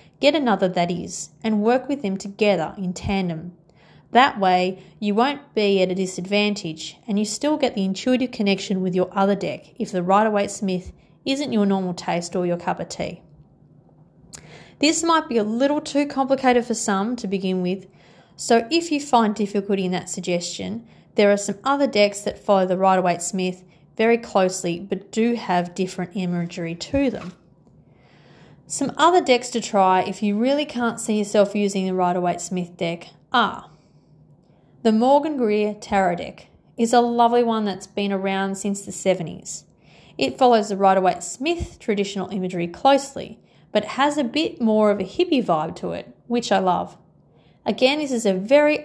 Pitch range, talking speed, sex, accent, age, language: 185-235 Hz, 180 wpm, female, Australian, 30-49, English